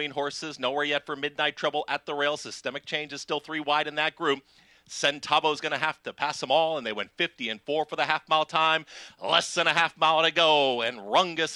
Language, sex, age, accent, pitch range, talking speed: English, male, 40-59, American, 170-255 Hz, 235 wpm